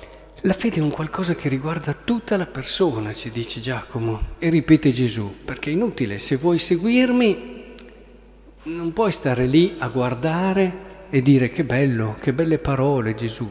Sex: male